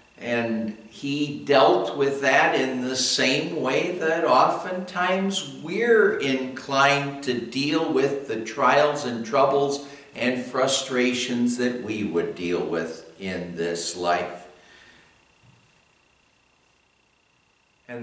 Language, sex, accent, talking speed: English, male, American, 105 wpm